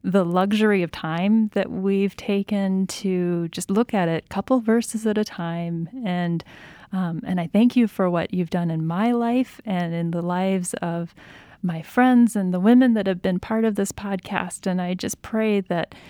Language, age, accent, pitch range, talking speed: English, 30-49, American, 175-215 Hz, 200 wpm